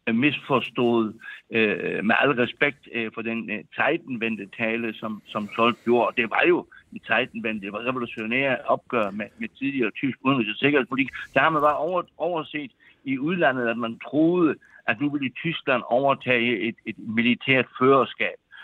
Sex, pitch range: male, 115-145 Hz